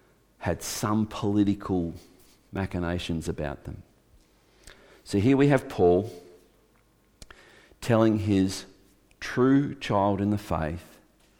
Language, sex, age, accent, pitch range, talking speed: English, male, 50-69, Australian, 85-105 Hz, 95 wpm